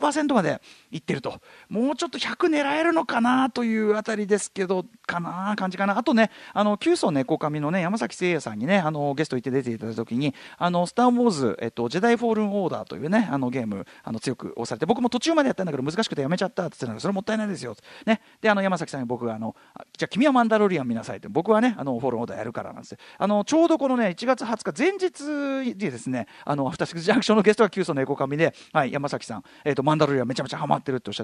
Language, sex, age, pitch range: Japanese, male, 40-59, 145-240 Hz